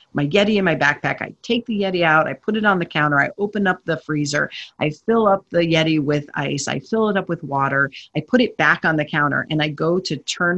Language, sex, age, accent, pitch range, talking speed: English, female, 40-59, American, 150-190 Hz, 260 wpm